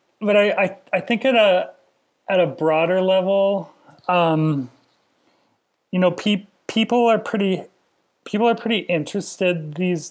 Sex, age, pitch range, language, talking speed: male, 30-49, 155-185 Hz, English, 135 wpm